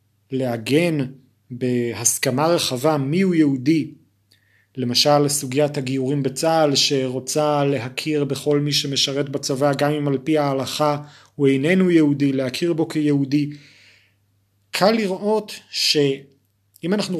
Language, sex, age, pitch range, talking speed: Hebrew, male, 30-49, 130-170 Hz, 105 wpm